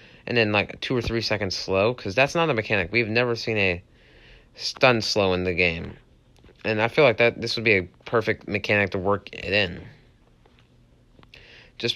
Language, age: English, 30-49